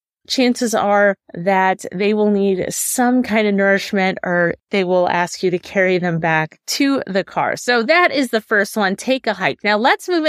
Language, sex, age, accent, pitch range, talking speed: English, female, 30-49, American, 200-275 Hz, 200 wpm